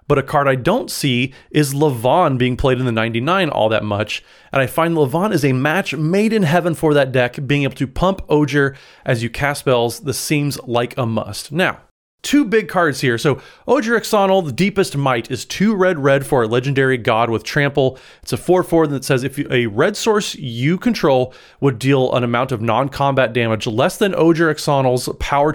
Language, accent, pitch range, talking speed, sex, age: English, American, 130-165 Hz, 200 wpm, male, 30-49